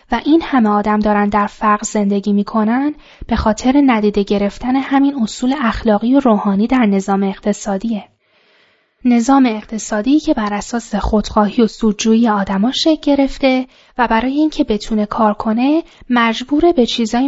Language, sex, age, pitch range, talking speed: Persian, female, 10-29, 210-270 Hz, 140 wpm